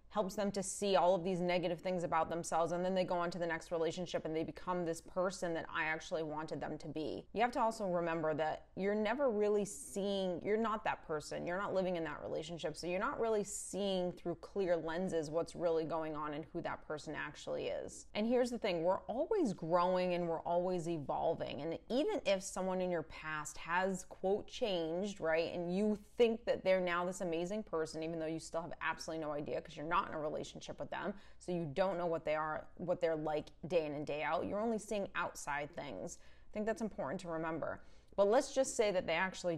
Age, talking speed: 20-39, 225 wpm